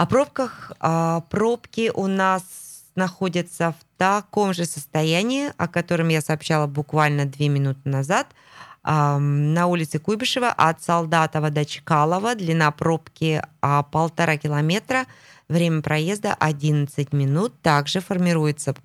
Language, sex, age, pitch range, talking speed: Russian, female, 20-39, 140-175 Hz, 110 wpm